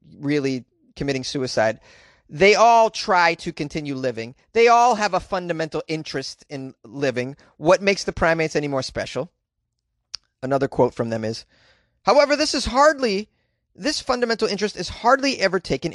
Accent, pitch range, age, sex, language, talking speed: American, 145-225 Hz, 30-49, male, English, 150 wpm